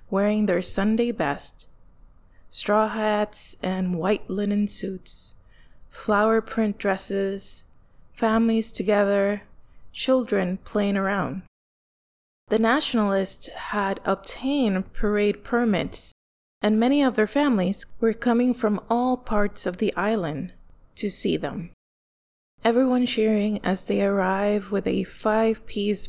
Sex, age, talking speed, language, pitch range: female, 20-39, 110 wpm, English, 195-225 Hz